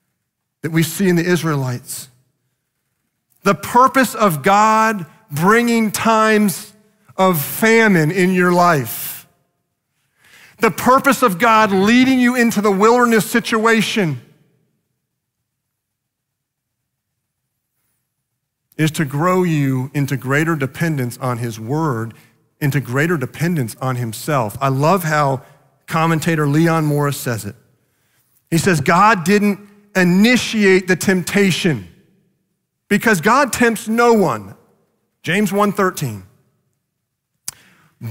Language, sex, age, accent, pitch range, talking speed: English, male, 40-59, American, 135-200 Hz, 100 wpm